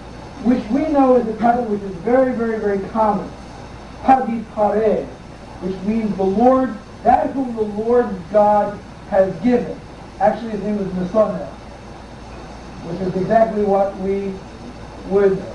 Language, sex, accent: English, male, American